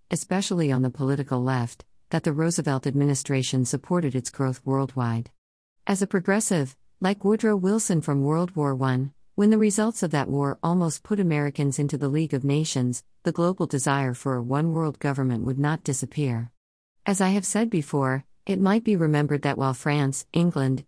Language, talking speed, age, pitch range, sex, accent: English, 170 wpm, 50-69, 130-165 Hz, female, American